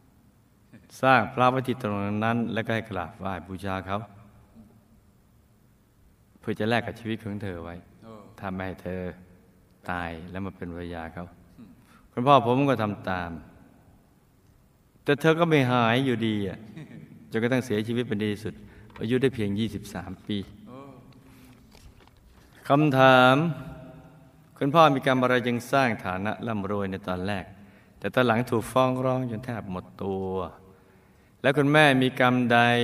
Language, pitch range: Thai, 100-125 Hz